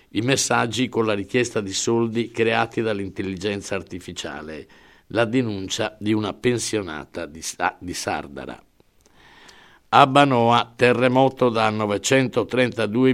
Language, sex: Italian, male